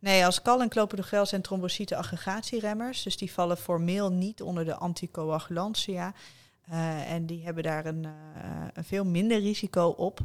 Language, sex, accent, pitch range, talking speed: Dutch, female, Dutch, 160-180 Hz, 165 wpm